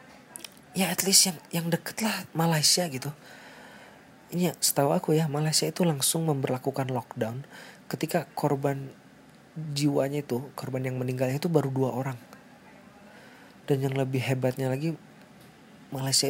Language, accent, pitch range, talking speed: Indonesian, native, 125-165 Hz, 130 wpm